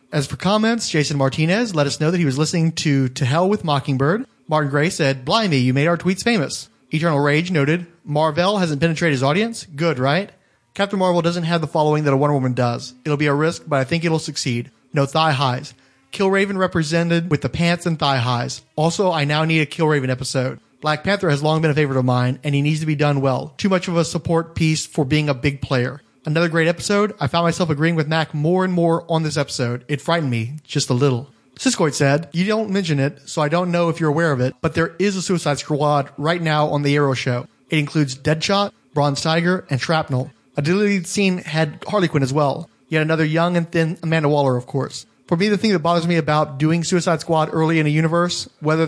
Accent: American